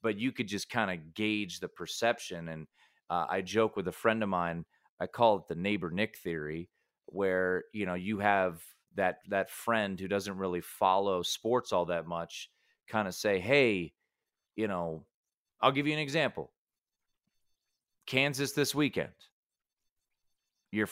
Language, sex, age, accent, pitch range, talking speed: English, male, 30-49, American, 100-130 Hz, 160 wpm